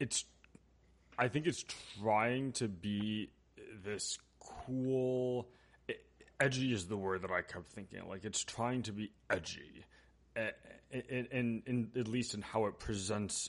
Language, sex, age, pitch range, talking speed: English, male, 30-49, 100-125 Hz, 145 wpm